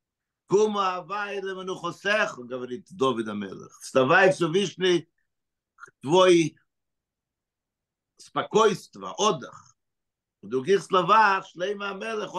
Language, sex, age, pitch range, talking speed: Russian, male, 60-79, 145-190 Hz, 65 wpm